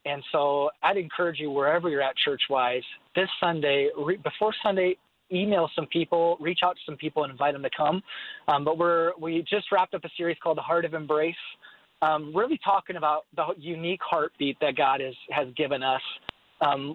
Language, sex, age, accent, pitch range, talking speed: English, male, 30-49, American, 140-170 Hz, 195 wpm